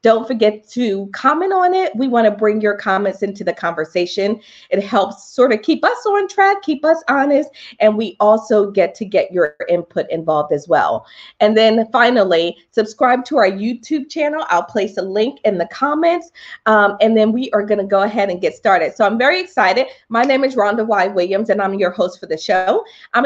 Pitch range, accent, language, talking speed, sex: 195-280 Hz, American, English, 210 wpm, female